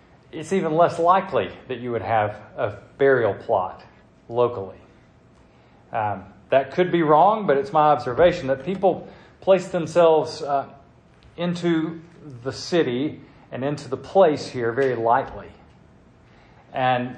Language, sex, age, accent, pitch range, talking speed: English, male, 40-59, American, 125-175 Hz, 130 wpm